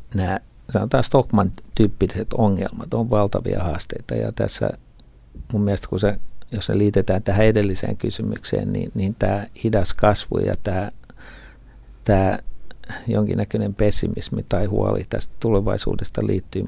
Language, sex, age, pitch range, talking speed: Finnish, male, 50-69, 100-115 Hz, 125 wpm